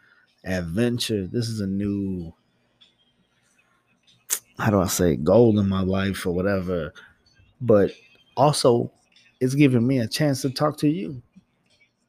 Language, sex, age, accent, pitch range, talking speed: English, male, 20-39, American, 100-150 Hz, 130 wpm